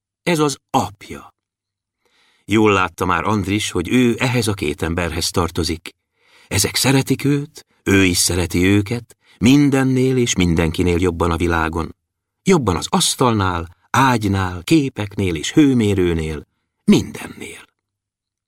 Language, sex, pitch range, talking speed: Hungarian, male, 100-140 Hz, 115 wpm